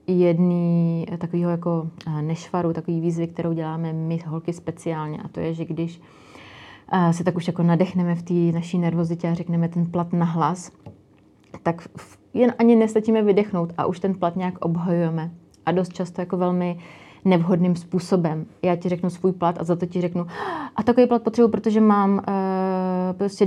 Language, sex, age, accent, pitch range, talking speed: Czech, female, 30-49, native, 160-175 Hz, 170 wpm